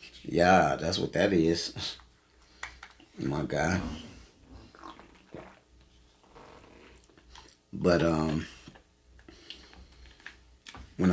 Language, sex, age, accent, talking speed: English, male, 30-49, American, 55 wpm